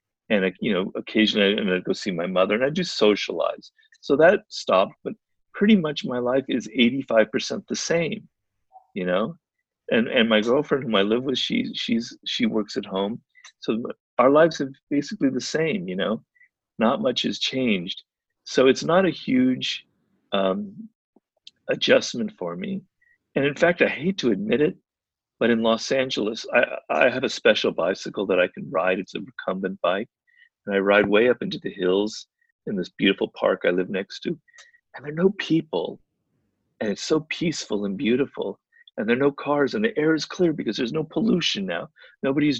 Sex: male